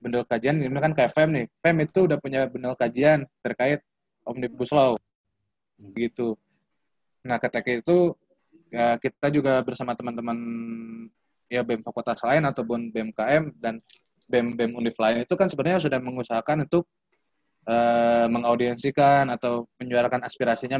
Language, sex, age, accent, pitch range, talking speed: Indonesian, male, 20-39, native, 120-150 Hz, 130 wpm